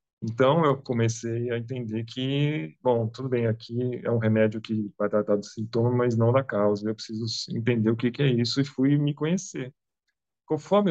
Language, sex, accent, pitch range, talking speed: Portuguese, male, Brazilian, 115-150 Hz, 185 wpm